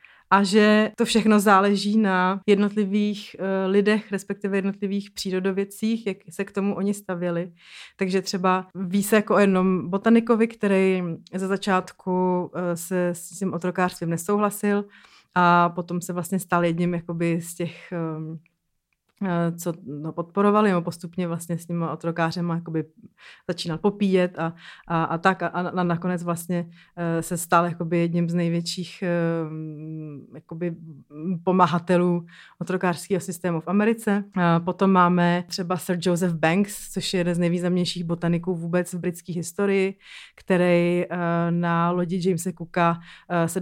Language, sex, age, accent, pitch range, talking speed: Czech, female, 30-49, native, 170-190 Hz, 140 wpm